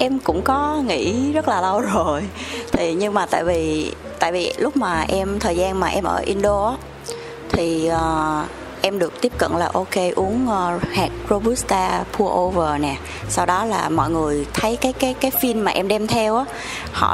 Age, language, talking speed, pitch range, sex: 20-39, Vietnamese, 180 wpm, 170-250 Hz, female